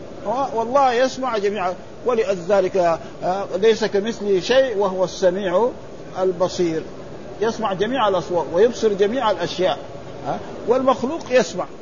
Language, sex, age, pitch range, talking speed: Arabic, male, 50-69, 190-245 Hz, 90 wpm